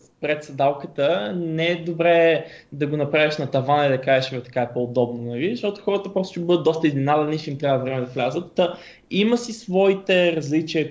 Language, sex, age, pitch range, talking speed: Bulgarian, male, 20-39, 135-170 Hz, 185 wpm